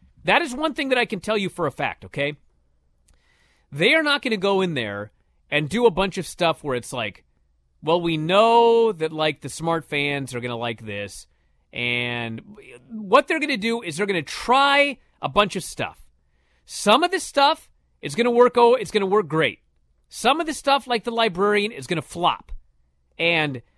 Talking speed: 210 wpm